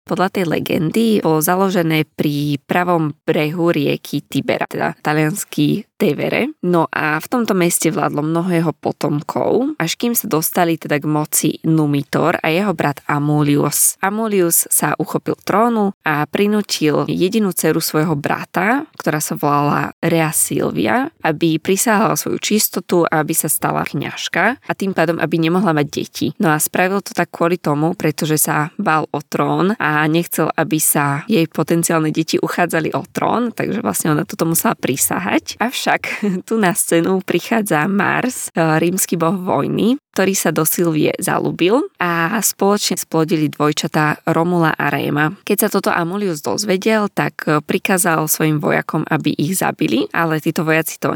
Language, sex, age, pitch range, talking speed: Slovak, female, 20-39, 155-190 Hz, 155 wpm